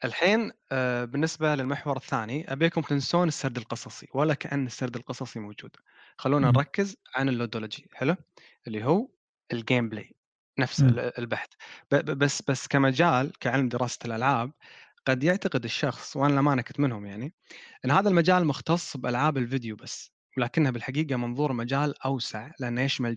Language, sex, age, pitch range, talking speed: Arabic, male, 20-39, 120-150 Hz, 135 wpm